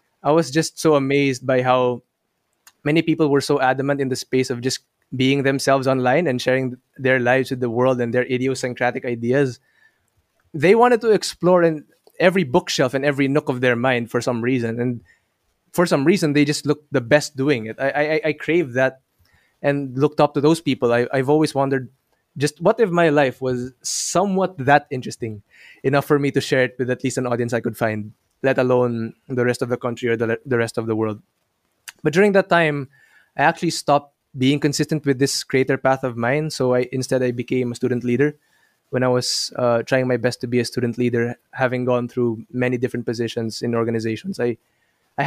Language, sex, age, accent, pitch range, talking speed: English, male, 20-39, Filipino, 125-150 Hz, 205 wpm